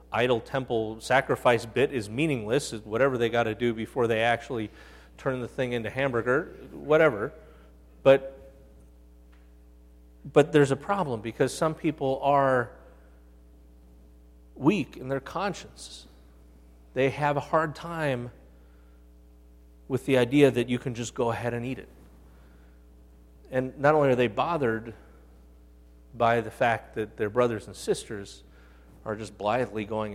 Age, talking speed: 40-59, 135 wpm